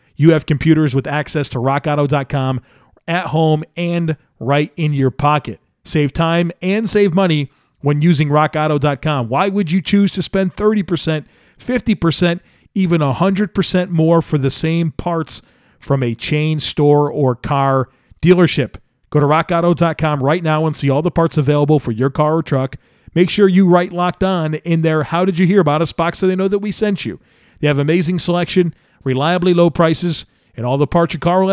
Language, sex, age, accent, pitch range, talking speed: English, male, 40-59, American, 140-175 Hz, 175 wpm